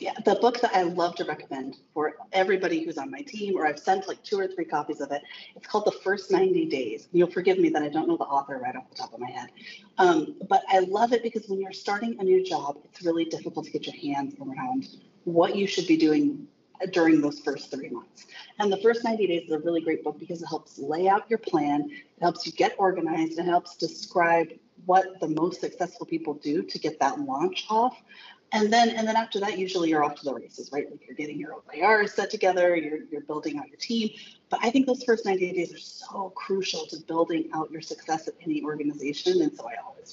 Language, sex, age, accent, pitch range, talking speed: English, female, 30-49, American, 165-235 Hz, 240 wpm